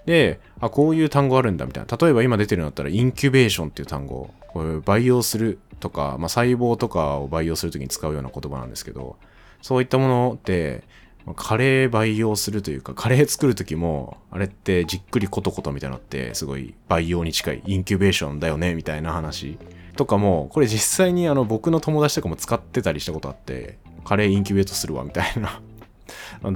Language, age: Japanese, 20-39